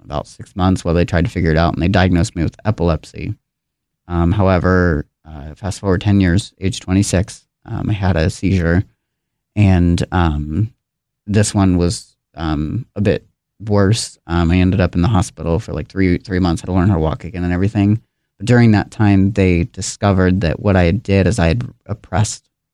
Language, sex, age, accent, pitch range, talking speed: English, male, 30-49, American, 90-105 Hz, 195 wpm